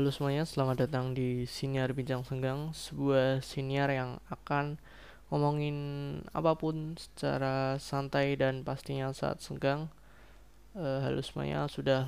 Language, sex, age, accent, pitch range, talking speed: Indonesian, male, 20-39, native, 130-145 Hz, 115 wpm